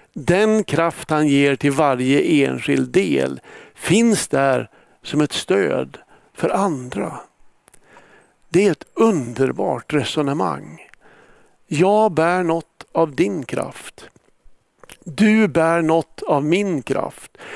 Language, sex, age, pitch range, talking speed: Swedish, male, 60-79, 145-180 Hz, 110 wpm